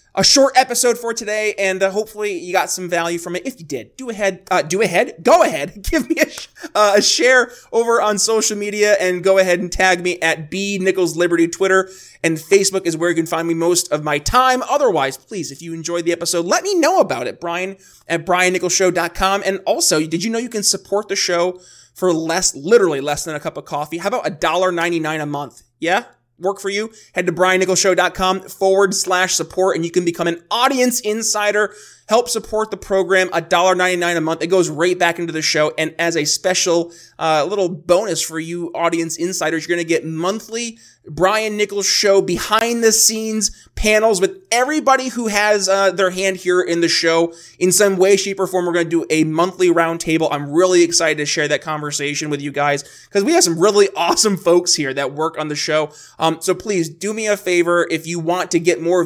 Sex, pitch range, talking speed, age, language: male, 165-205 Hz, 215 wpm, 20-39, English